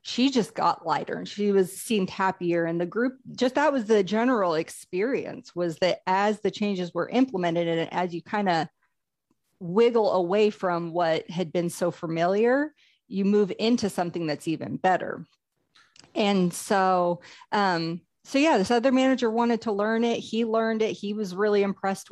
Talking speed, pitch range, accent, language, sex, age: 175 wpm, 175-220 Hz, American, English, female, 30-49